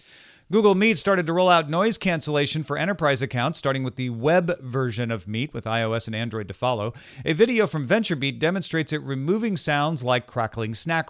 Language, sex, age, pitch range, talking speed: English, male, 40-59, 120-155 Hz, 190 wpm